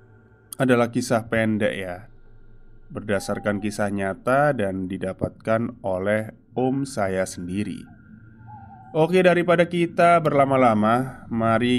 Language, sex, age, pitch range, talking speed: Indonesian, male, 20-39, 95-120 Hz, 90 wpm